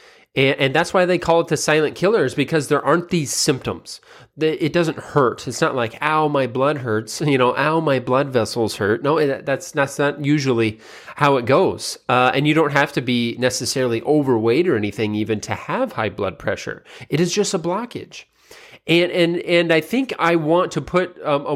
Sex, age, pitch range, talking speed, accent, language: male, 30-49, 120-165 Hz, 200 wpm, American, English